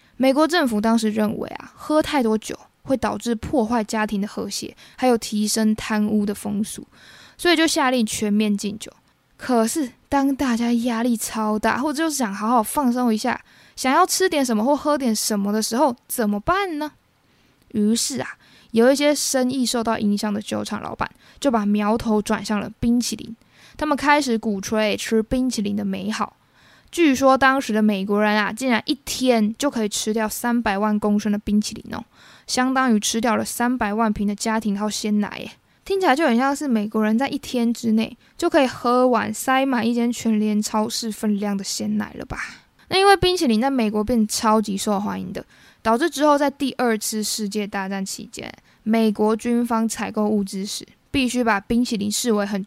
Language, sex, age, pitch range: Chinese, female, 20-39, 215-260 Hz